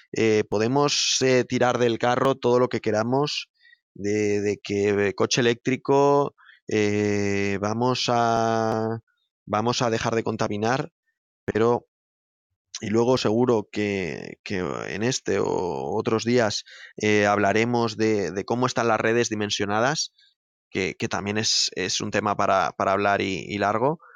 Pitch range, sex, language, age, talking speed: 110-140 Hz, male, Spanish, 20-39, 140 wpm